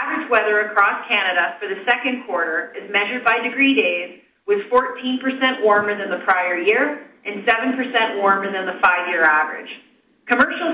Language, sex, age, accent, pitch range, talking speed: English, female, 30-49, American, 195-255 Hz, 155 wpm